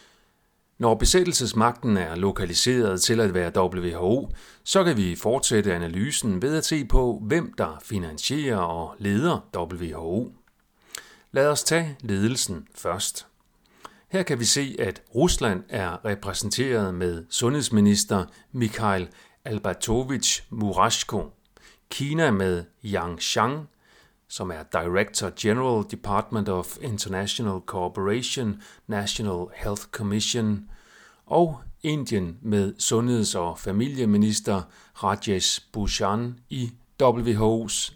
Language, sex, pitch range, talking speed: Danish, male, 95-120 Hz, 105 wpm